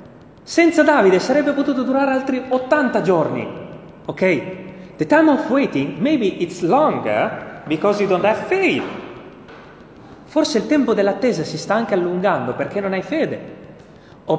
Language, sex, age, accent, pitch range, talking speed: Italian, male, 30-49, native, 130-215 Hz, 140 wpm